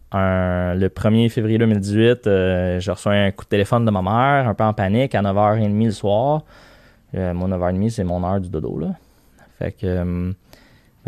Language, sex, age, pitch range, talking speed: French, male, 20-39, 95-110 Hz, 190 wpm